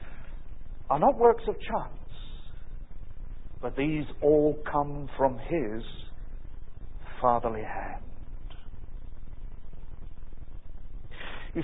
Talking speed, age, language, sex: 70 wpm, 60-79, English, male